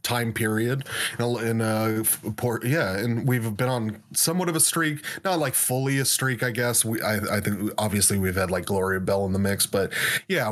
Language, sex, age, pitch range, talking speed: English, male, 30-49, 100-125 Hz, 215 wpm